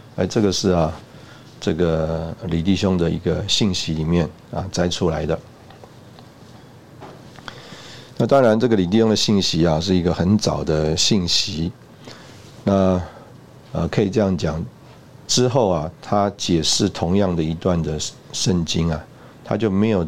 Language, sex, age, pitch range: Chinese, male, 50-69, 85-110 Hz